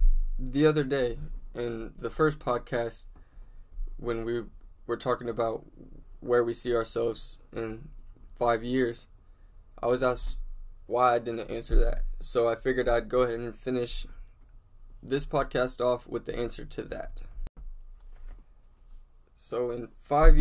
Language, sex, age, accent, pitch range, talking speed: English, male, 10-29, American, 115-135 Hz, 135 wpm